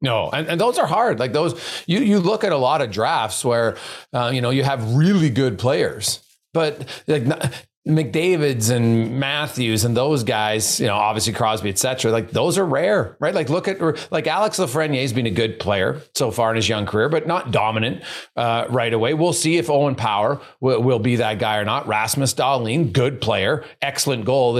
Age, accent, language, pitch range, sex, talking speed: 40-59, American, English, 120-160 Hz, male, 200 wpm